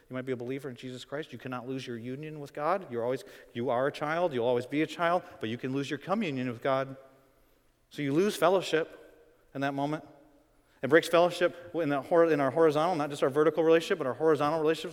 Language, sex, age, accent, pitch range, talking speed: English, male, 40-59, American, 140-190 Hz, 235 wpm